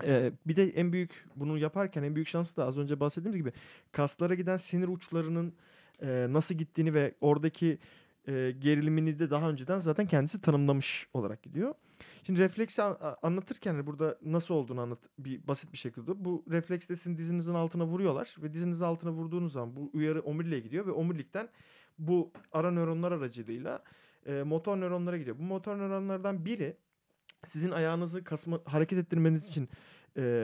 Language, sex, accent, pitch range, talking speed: Turkish, male, native, 150-185 Hz, 160 wpm